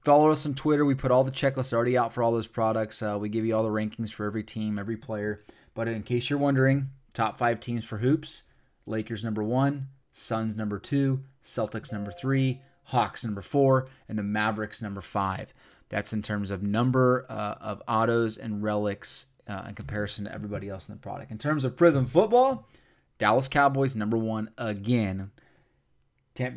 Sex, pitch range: male, 110-135 Hz